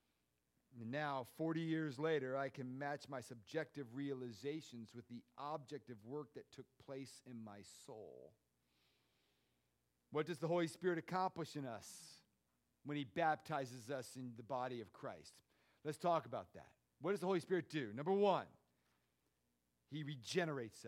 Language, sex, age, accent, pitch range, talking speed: English, male, 40-59, American, 105-150 Hz, 150 wpm